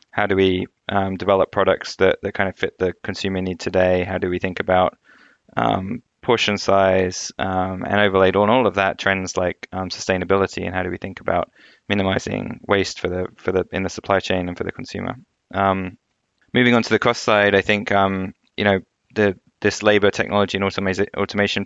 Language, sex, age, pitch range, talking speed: English, male, 20-39, 95-100 Hz, 205 wpm